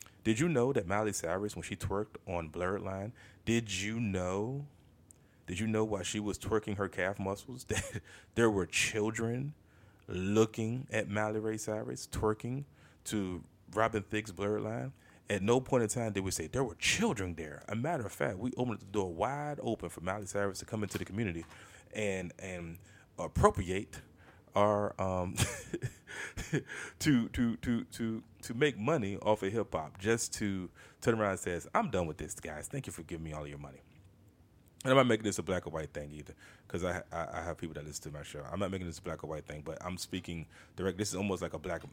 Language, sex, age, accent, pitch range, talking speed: English, male, 30-49, American, 85-110 Hz, 210 wpm